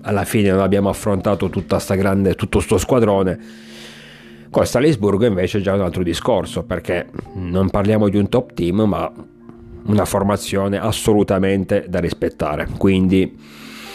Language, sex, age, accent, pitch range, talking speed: Italian, male, 40-59, native, 95-105 Hz, 140 wpm